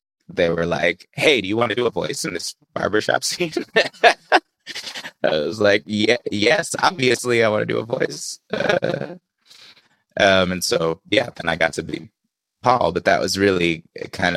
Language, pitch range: English, 85-140 Hz